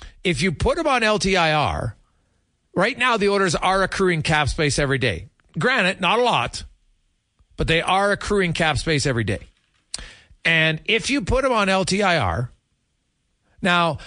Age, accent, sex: 40-59, American, male